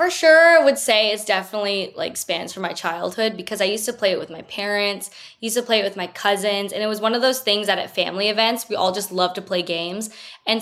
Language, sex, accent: English, female, American